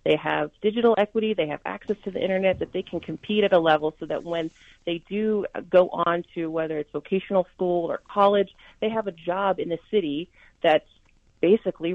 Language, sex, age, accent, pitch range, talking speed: English, female, 40-59, American, 165-205 Hz, 200 wpm